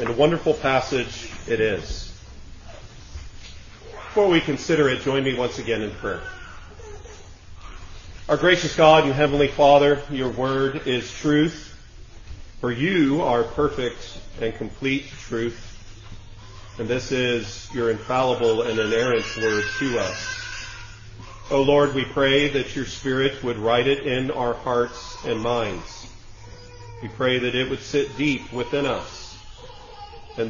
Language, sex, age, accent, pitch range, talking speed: English, male, 40-59, American, 110-145 Hz, 135 wpm